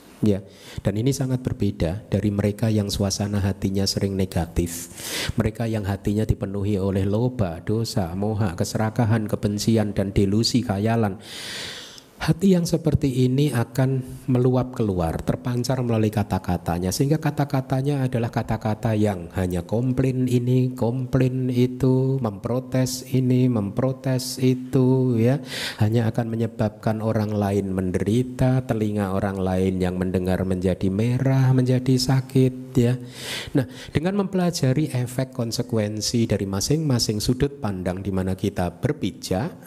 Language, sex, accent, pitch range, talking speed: Indonesian, male, native, 95-125 Hz, 120 wpm